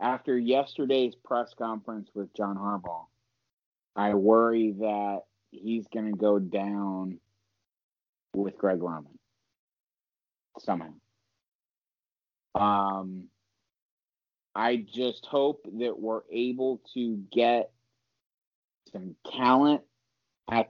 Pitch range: 100-120 Hz